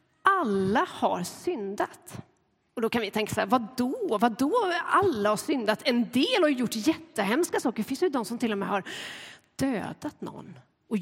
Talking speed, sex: 185 wpm, female